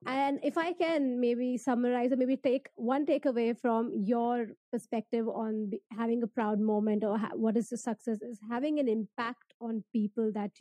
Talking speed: 175 wpm